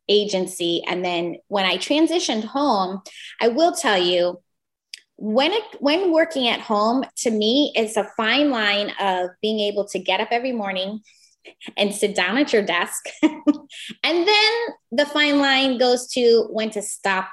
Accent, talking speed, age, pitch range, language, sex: American, 160 wpm, 20-39, 200-275 Hz, English, female